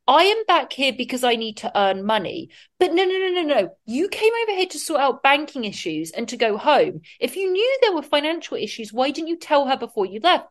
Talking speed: 250 wpm